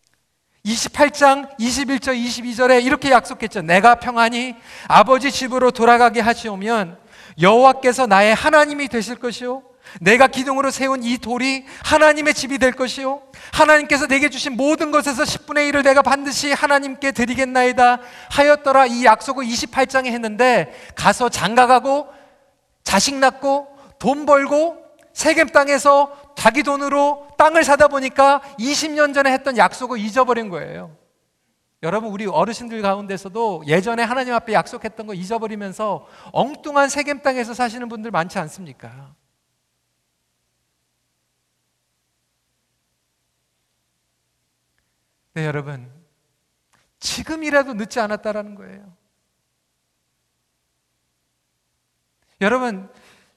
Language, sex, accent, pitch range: Korean, male, native, 190-275 Hz